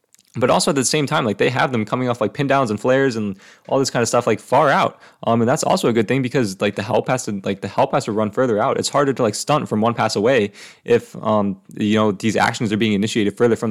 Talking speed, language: 295 wpm, English